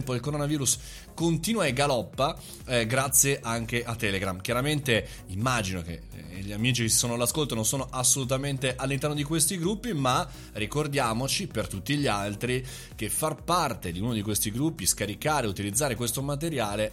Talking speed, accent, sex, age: 160 wpm, native, male, 20-39